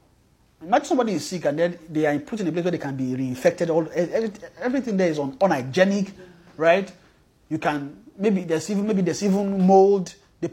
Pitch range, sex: 155-200 Hz, male